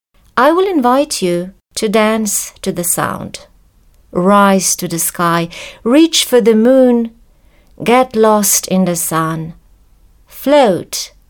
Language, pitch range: English, 180-235 Hz